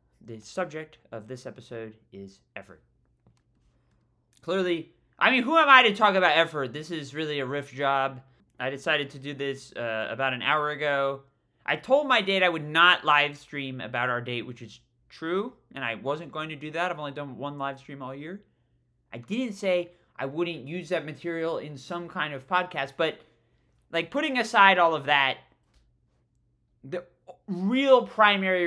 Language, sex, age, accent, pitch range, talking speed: English, male, 20-39, American, 125-170 Hz, 180 wpm